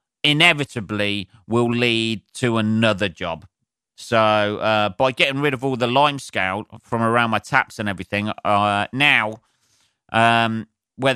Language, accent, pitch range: English, British, 100-125 Hz